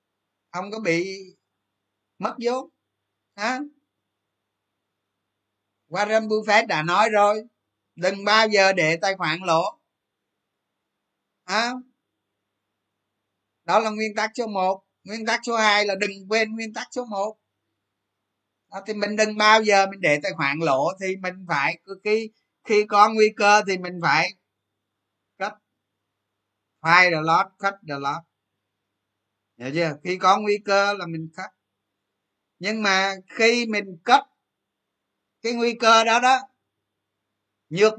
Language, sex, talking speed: Vietnamese, male, 135 wpm